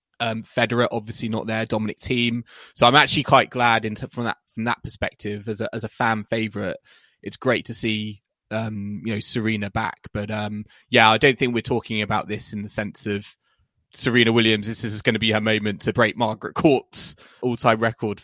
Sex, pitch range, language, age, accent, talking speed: male, 105-120 Hz, English, 20-39, British, 205 wpm